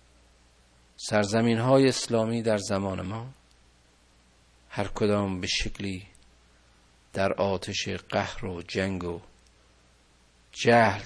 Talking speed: 85 wpm